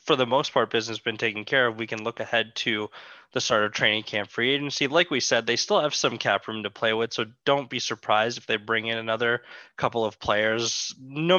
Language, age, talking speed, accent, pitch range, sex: English, 20-39, 250 wpm, American, 115-135 Hz, male